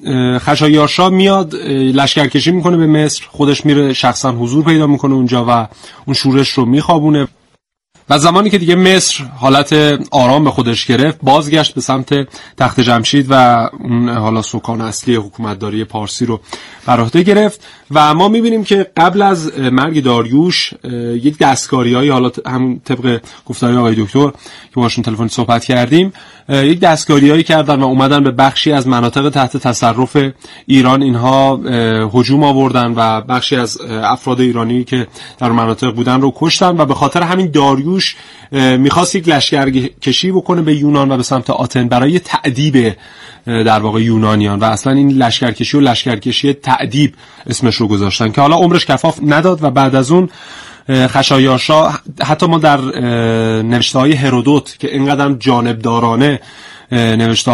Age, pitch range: 30-49, 120-145 Hz